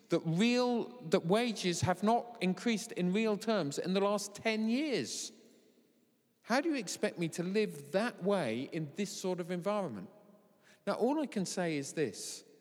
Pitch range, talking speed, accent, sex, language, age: 155-205 Hz, 170 wpm, British, male, English, 40-59